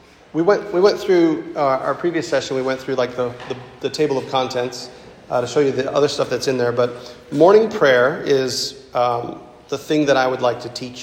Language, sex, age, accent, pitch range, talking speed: English, male, 40-59, American, 125-145 Hz, 230 wpm